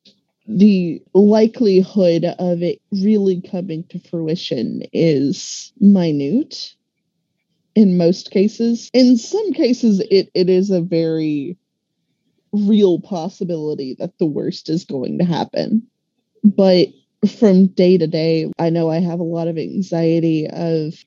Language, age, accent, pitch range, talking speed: English, 20-39, American, 165-200 Hz, 125 wpm